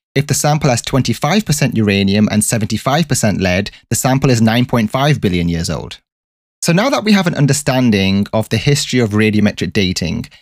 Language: English